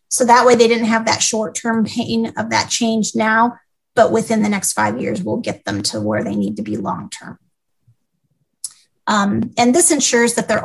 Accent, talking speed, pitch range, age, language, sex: American, 195 wpm, 210-240 Hz, 30-49, English, female